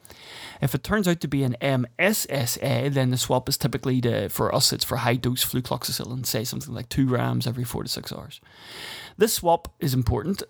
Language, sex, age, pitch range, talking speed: English, male, 20-39, 125-150 Hz, 200 wpm